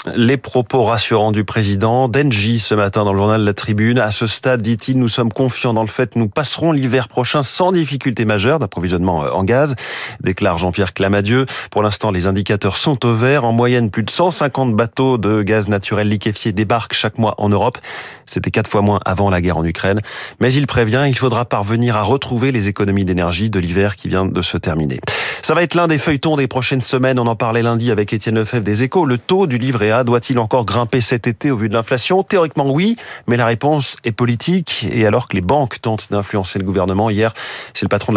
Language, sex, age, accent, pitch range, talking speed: French, male, 30-49, French, 100-130 Hz, 220 wpm